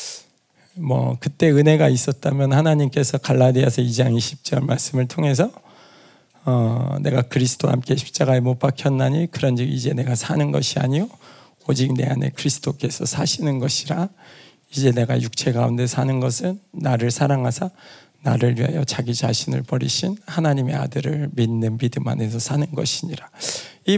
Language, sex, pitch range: Korean, male, 130-160 Hz